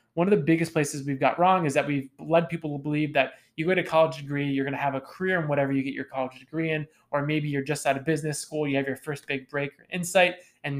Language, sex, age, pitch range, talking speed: English, male, 20-39, 135-155 Hz, 290 wpm